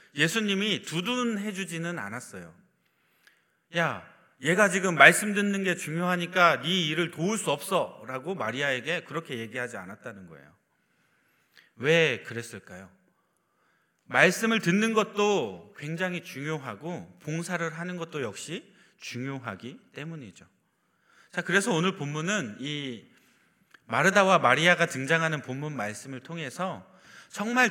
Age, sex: 30-49, male